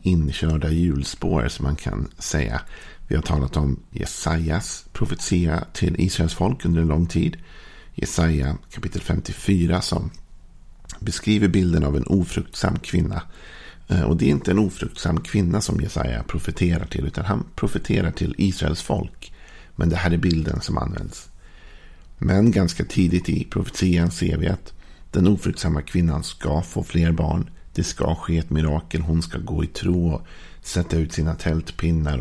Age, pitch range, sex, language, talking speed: 50-69, 80-90 Hz, male, Swedish, 155 wpm